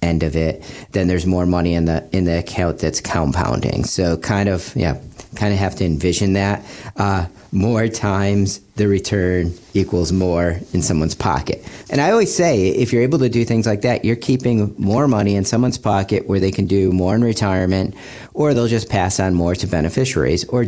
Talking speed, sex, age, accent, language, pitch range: 200 wpm, male, 40-59, American, English, 90-110 Hz